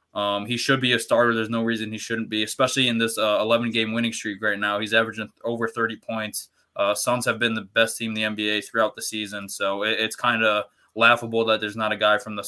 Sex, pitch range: male, 105-115 Hz